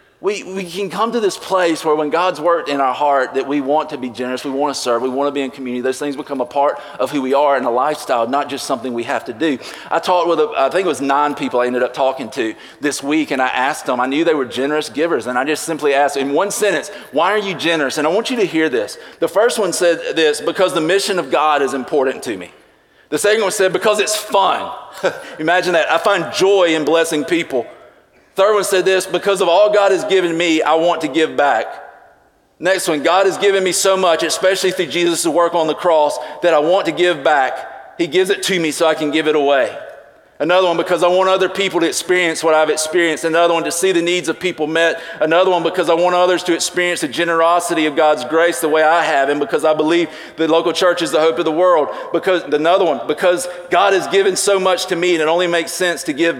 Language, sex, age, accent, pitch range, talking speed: English, male, 40-59, American, 150-185 Hz, 255 wpm